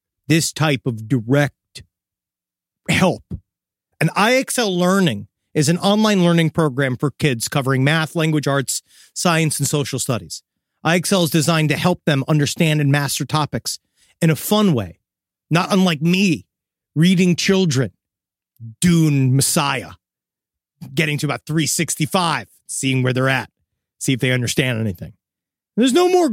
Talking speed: 135 wpm